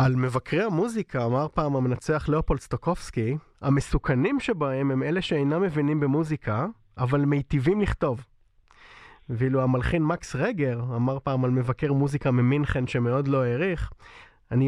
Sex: male